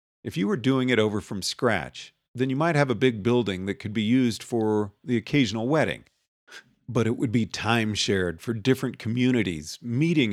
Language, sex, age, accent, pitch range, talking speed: English, male, 40-59, American, 110-140 Hz, 185 wpm